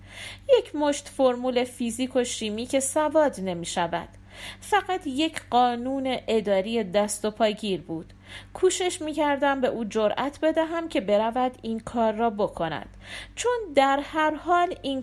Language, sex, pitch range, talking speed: Persian, female, 195-280 Hz, 140 wpm